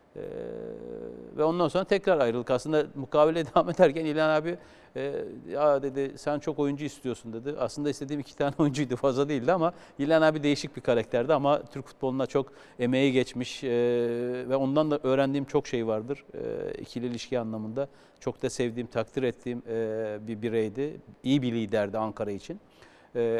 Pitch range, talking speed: 125-160 Hz, 165 wpm